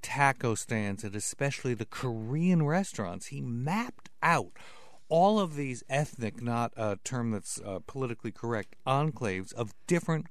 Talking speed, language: 140 wpm, English